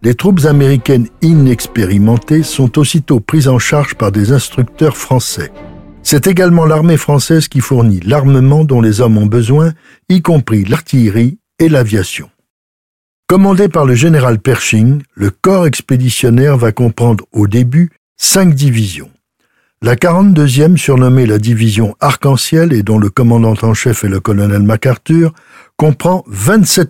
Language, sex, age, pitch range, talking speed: French, male, 60-79, 115-150 Hz, 140 wpm